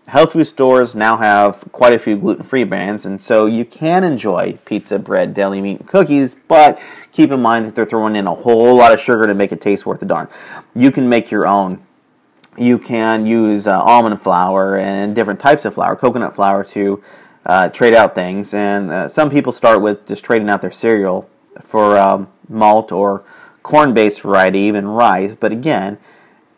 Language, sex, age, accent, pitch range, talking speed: English, male, 40-59, American, 100-115 Hz, 190 wpm